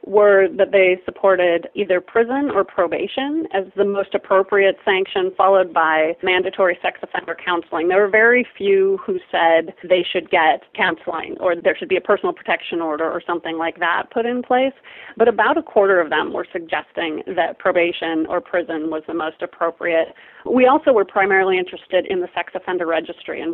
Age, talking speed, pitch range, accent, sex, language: 30-49, 180 wpm, 175-230 Hz, American, female, English